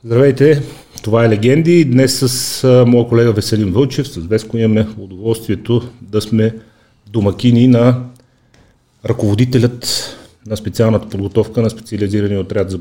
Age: 40-59